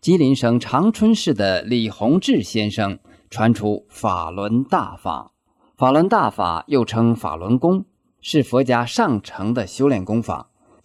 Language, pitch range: Chinese, 105-150 Hz